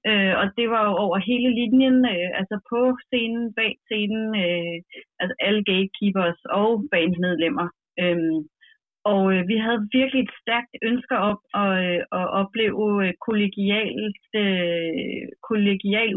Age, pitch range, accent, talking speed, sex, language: 30-49, 180-220 Hz, native, 140 wpm, female, Danish